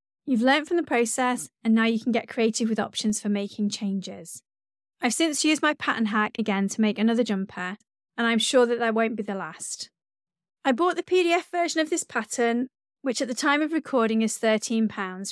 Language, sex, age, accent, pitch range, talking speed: English, female, 30-49, British, 215-275 Hz, 205 wpm